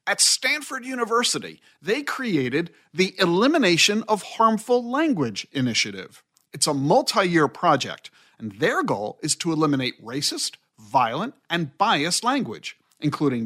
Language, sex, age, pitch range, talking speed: English, male, 50-69, 135-215 Hz, 120 wpm